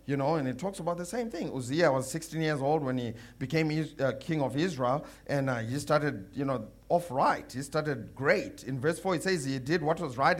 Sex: male